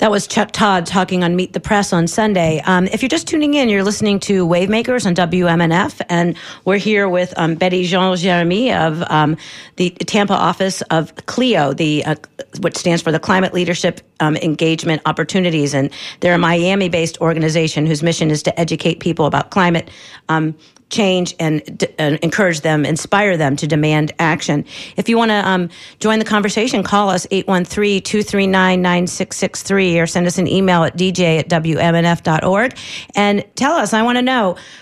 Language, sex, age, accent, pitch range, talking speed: English, female, 40-59, American, 170-215 Hz, 175 wpm